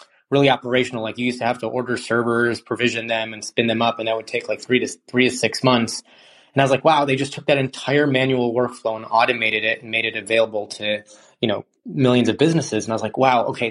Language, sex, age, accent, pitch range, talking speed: English, male, 20-39, American, 115-135 Hz, 255 wpm